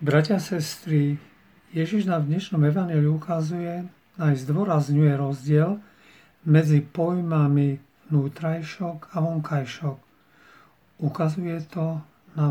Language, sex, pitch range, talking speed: Slovak, male, 150-175 Hz, 95 wpm